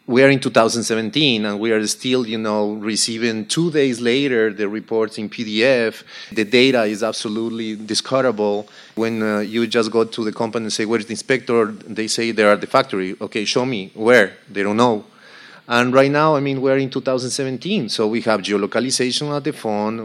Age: 30-49